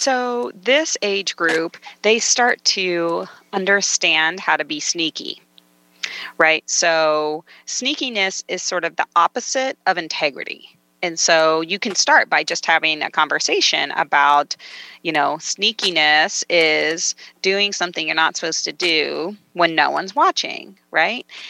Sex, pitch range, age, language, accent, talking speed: female, 160-220 Hz, 30-49, English, American, 135 wpm